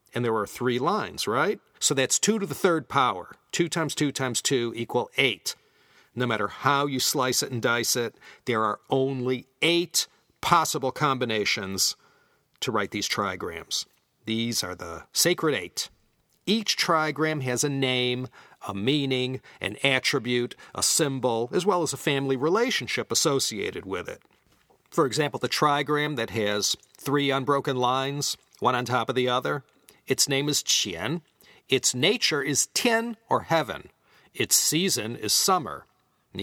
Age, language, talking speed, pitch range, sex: 40-59, English, 155 wpm, 125-160 Hz, male